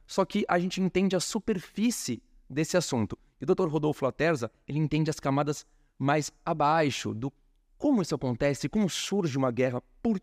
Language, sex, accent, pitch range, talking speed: Portuguese, male, Brazilian, 125-160 Hz, 170 wpm